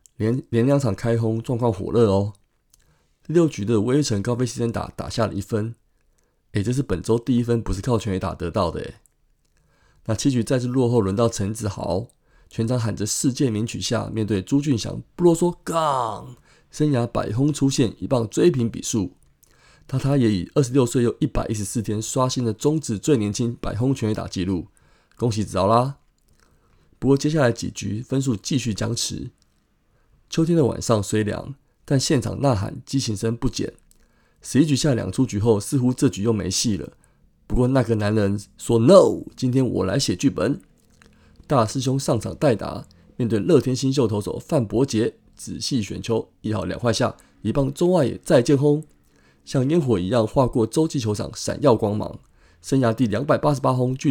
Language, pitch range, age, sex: Chinese, 105-135 Hz, 20-39, male